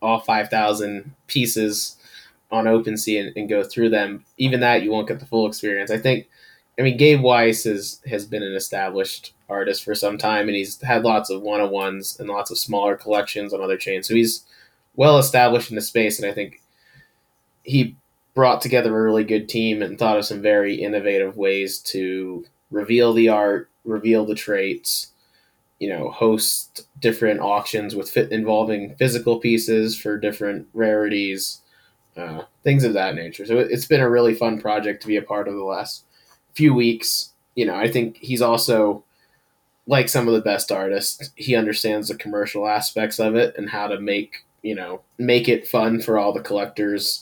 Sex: male